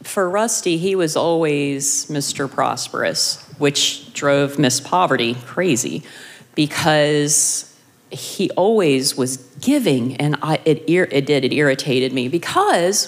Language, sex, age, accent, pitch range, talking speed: English, female, 40-59, American, 140-180 Hz, 115 wpm